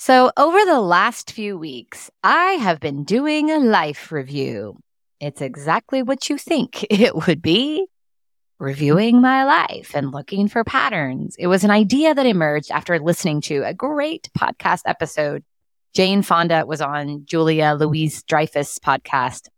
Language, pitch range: English, 145-215 Hz